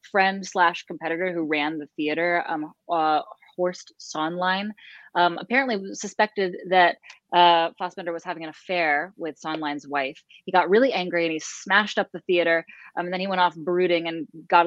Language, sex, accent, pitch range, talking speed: English, female, American, 160-190 Hz, 170 wpm